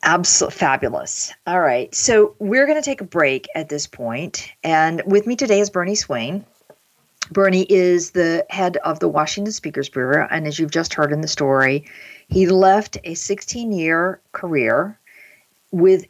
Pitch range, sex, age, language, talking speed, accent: 145-185 Hz, female, 50-69, English, 170 wpm, American